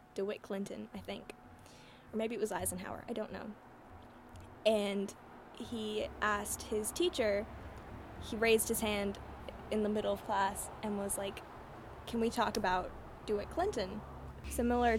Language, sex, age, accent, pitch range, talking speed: English, female, 10-29, American, 190-230 Hz, 145 wpm